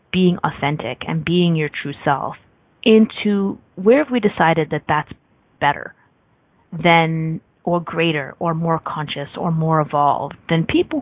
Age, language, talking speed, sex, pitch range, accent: 30-49, English, 140 wpm, female, 155-205 Hz, American